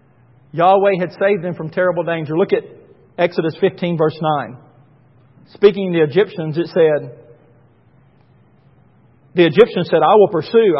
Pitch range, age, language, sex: 155-195 Hz, 50-69, English, male